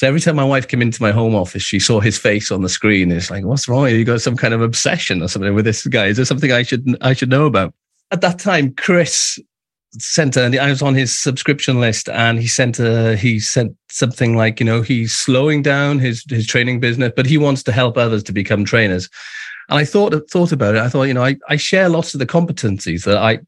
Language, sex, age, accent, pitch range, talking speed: English, male, 40-59, British, 105-140 Hz, 255 wpm